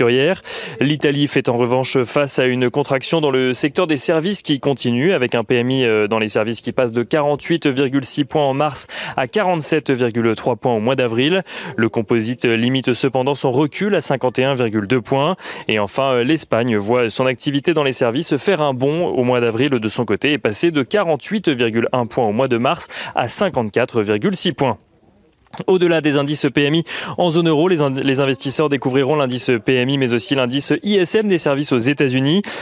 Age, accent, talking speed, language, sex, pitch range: 30-49, French, 175 wpm, French, male, 125-155 Hz